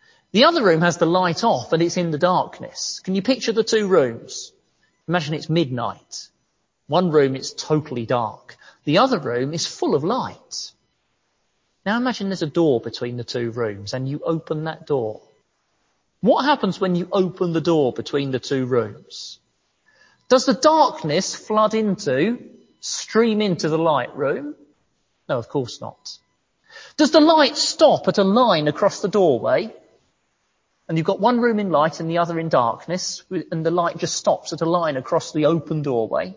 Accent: British